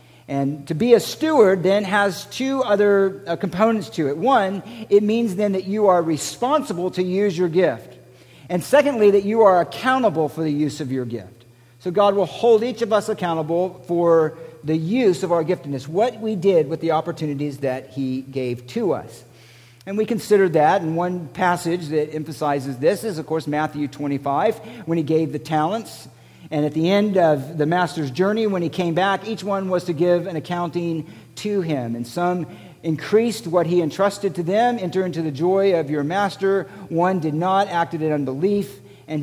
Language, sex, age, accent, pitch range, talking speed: English, male, 50-69, American, 145-195 Hz, 190 wpm